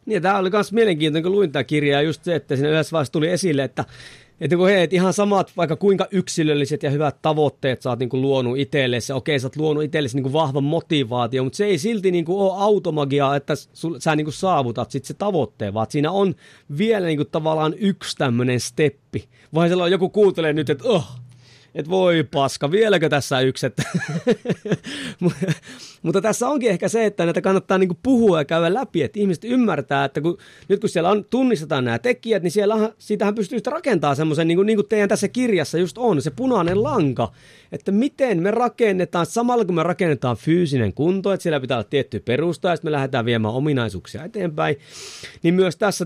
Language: Finnish